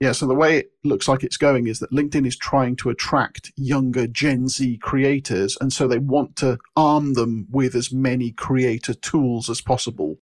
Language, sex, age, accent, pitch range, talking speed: English, male, 40-59, British, 125-140 Hz, 200 wpm